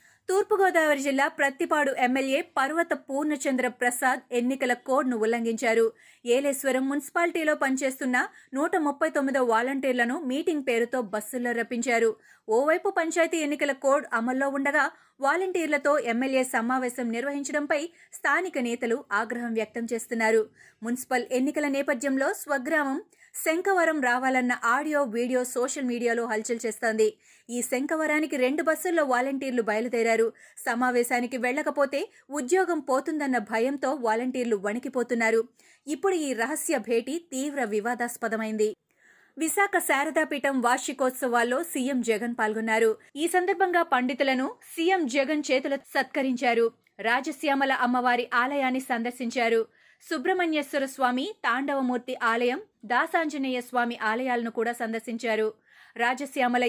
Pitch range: 235-295 Hz